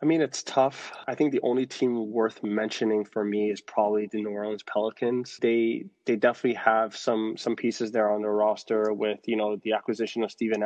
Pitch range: 110-120 Hz